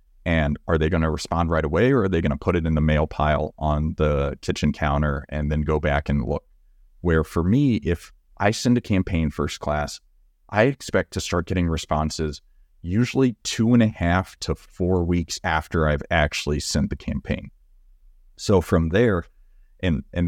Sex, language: male, English